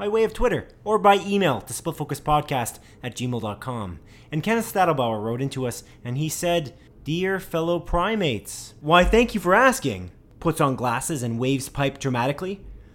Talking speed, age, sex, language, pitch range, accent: 165 wpm, 20-39, male, English, 125-175 Hz, American